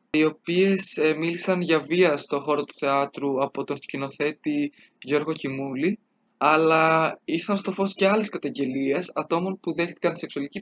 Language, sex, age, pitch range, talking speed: Greek, male, 20-39, 140-175 Hz, 140 wpm